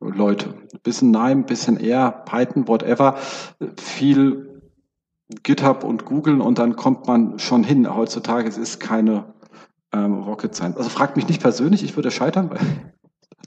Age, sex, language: 40-59, male, German